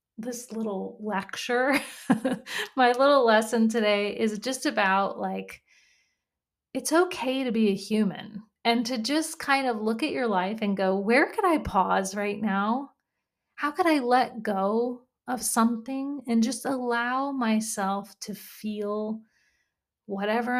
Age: 30-49